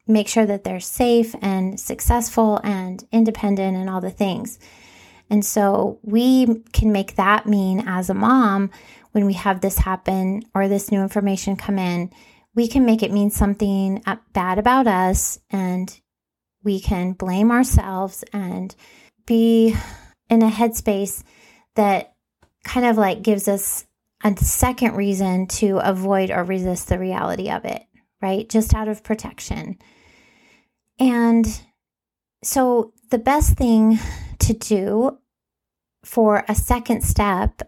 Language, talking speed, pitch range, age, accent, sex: English, 135 wpm, 195-230 Hz, 30-49, American, female